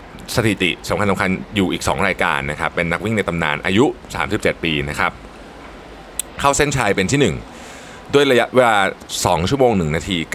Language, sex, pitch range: Thai, male, 80-105 Hz